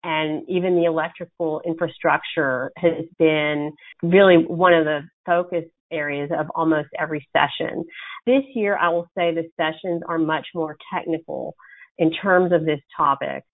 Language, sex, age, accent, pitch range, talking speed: English, female, 40-59, American, 160-190 Hz, 145 wpm